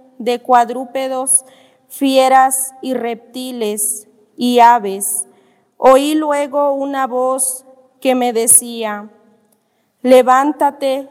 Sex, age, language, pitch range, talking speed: female, 30-49, Spanish, 240-265 Hz, 80 wpm